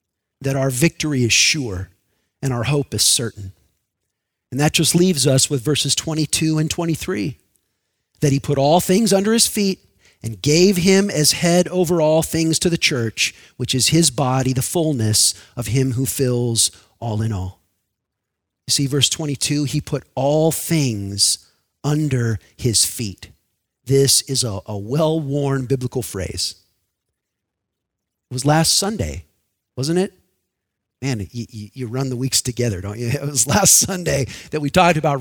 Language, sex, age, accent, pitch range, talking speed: English, male, 40-59, American, 105-155 Hz, 160 wpm